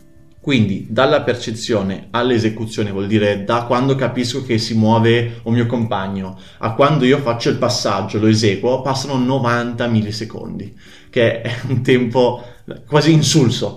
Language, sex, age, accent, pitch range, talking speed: Italian, male, 20-39, native, 110-140 Hz, 140 wpm